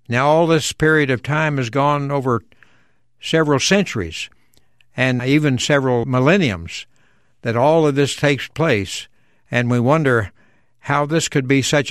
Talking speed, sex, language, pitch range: 145 wpm, male, English, 125-150 Hz